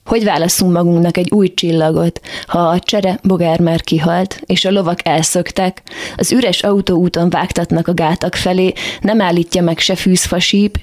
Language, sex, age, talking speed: Hungarian, female, 20-39, 155 wpm